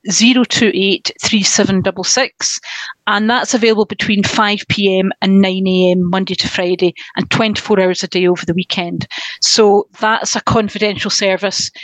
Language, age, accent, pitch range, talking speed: English, 40-59, British, 190-220 Hz, 125 wpm